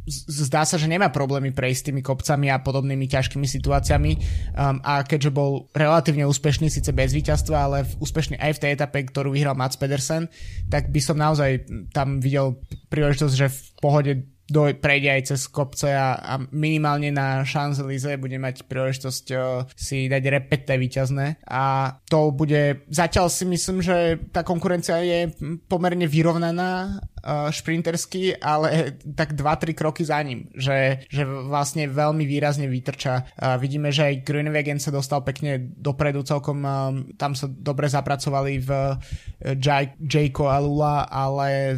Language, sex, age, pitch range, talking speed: Slovak, male, 20-39, 135-150 Hz, 150 wpm